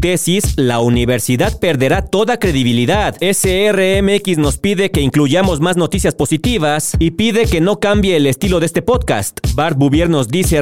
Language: Spanish